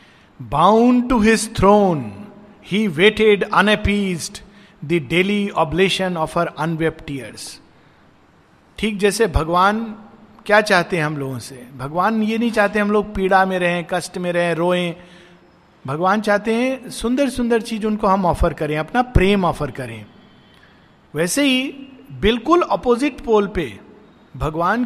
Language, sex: Hindi, male